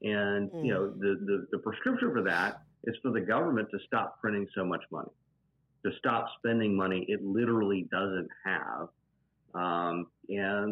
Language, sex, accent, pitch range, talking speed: English, male, American, 95-125 Hz, 160 wpm